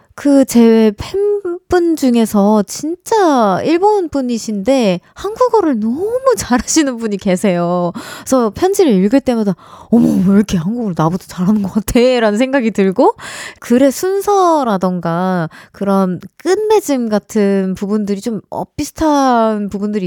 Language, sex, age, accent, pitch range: Korean, female, 20-39, native, 195-275 Hz